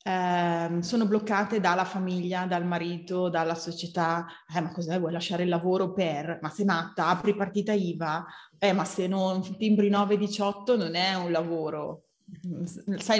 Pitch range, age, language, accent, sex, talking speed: 170-215 Hz, 30-49, Italian, native, female, 155 wpm